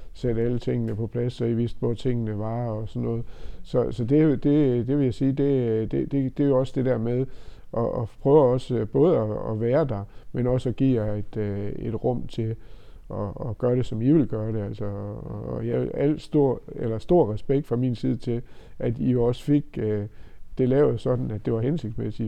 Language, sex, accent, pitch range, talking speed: Danish, male, native, 110-130 Hz, 220 wpm